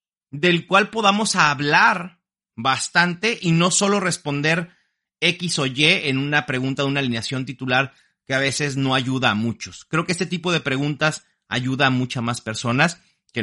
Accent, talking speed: Mexican, 170 wpm